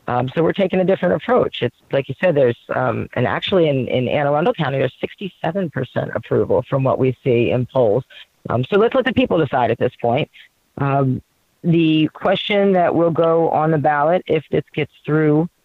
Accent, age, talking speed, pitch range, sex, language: American, 40-59, 205 wpm, 130-160 Hz, female, English